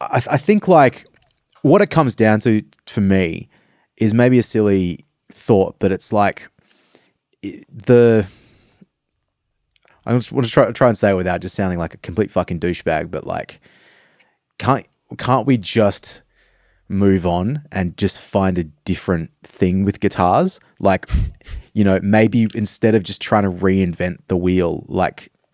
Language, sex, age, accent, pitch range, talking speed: English, male, 20-39, Australian, 90-115 Hz, 160 wpm